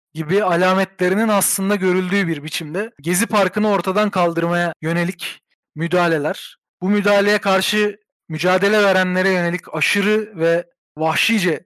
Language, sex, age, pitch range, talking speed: Turkish, male, 40-59, 180-225 Hz, 110 wpm